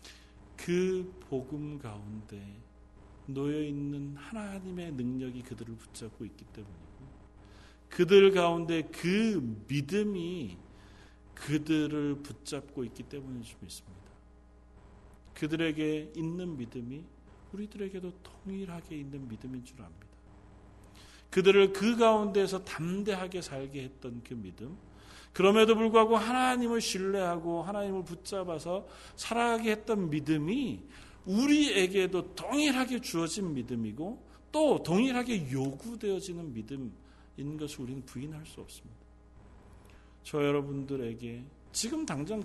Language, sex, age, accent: Korean, male, 40-59, native